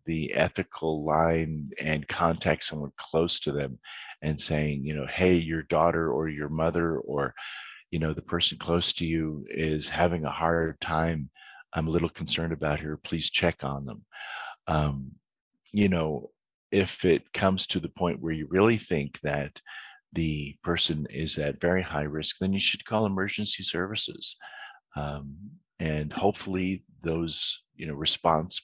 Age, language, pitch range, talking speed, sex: 50-69, English, 75-85 Hz, 160 wpm, male